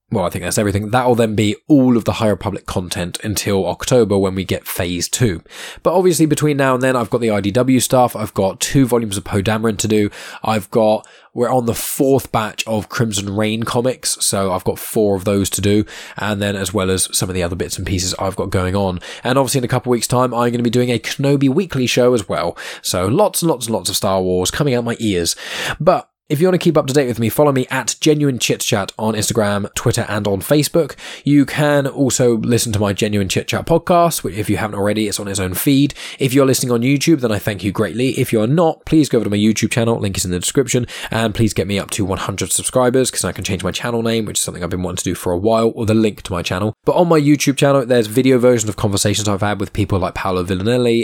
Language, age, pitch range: English, 10-29, 100-125 Hz